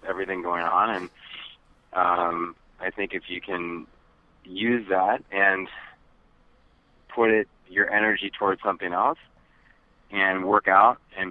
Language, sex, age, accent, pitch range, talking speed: English, male, 30-49, American, 85-100 Hz, 125 wpm